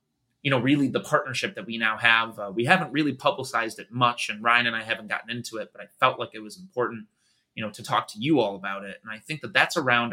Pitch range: 110-130 Hz